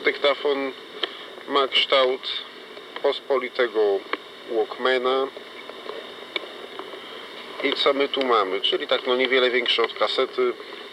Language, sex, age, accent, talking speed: Polish, male, 40-59, native, 95 wpm